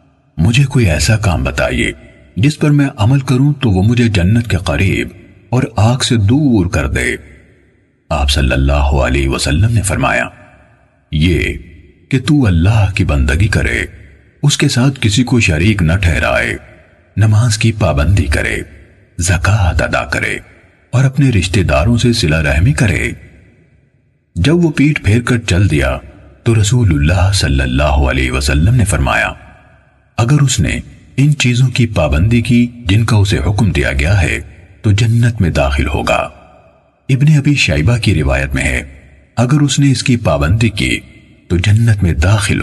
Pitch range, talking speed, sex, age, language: 75-120 Hz, 160 wpm, male, 40-59, Urdu